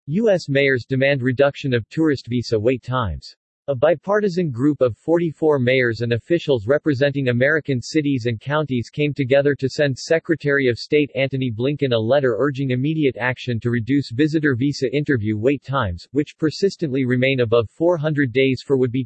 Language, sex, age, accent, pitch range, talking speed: English, male, 40-59, American, 120-150 Hz, 160 wpm